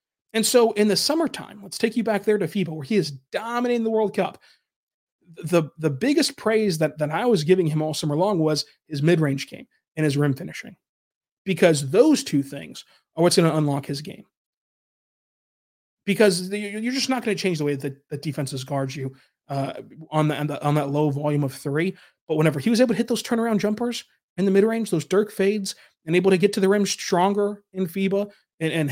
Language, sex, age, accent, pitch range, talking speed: English, male, 30-49, American, 150-200 Hz, 210 wpm